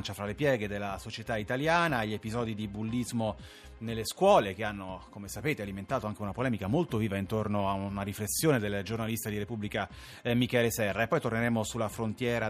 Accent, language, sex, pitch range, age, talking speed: native, Italian, male, 105-125 Hz, 30-49, 180 wpm